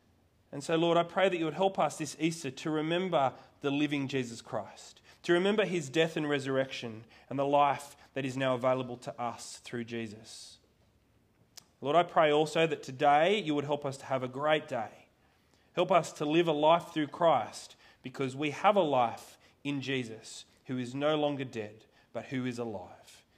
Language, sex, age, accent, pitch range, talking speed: English, male, 30-49, Australian, 130-185 Hz, 190 wpm